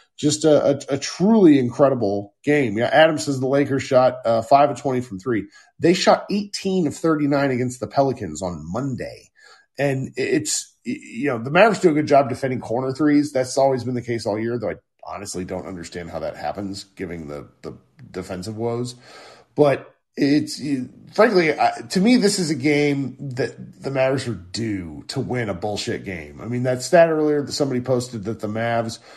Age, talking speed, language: 40-59, 195 wpm, English